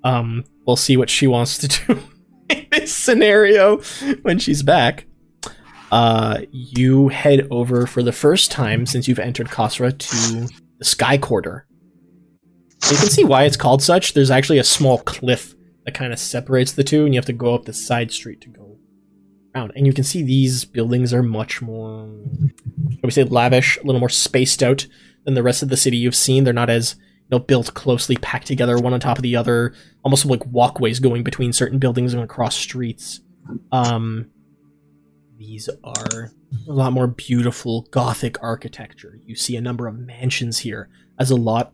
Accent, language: American, English